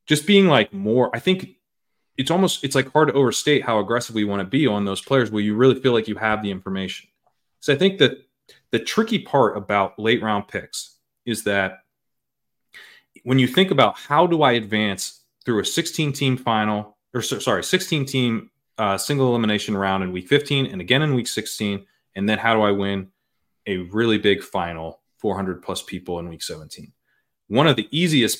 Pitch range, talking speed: 100-130 Hz, 190 wpm